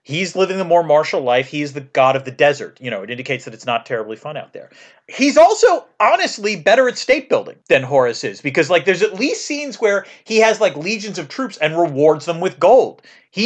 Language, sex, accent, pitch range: English, male, American, 140-210 Hz